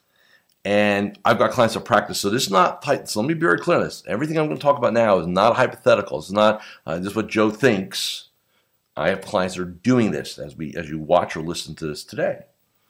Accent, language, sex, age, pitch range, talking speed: American, English, male, 50-69, 90-110 Hz, 250 wpm